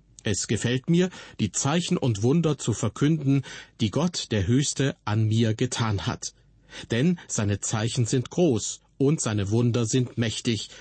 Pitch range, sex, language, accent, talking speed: 110-140 Hz, male, German, German, 150 wpm